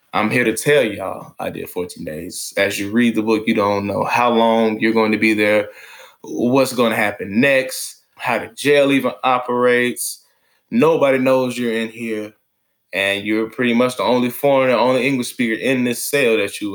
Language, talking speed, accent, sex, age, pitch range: English, 195 wpm, American, male, 20-39, 110-125 Hz